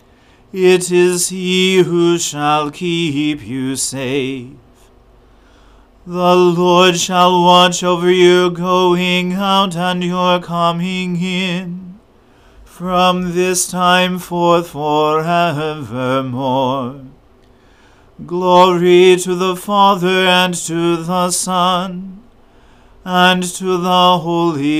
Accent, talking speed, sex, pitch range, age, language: American, 90 wpm, male, 150-180 Hz, 40-59, English